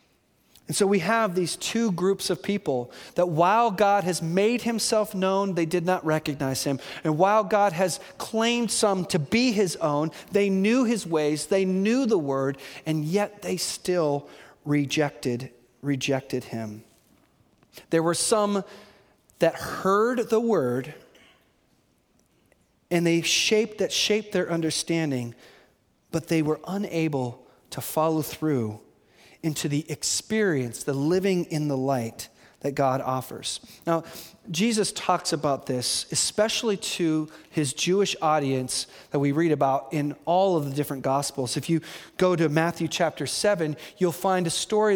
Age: 40-59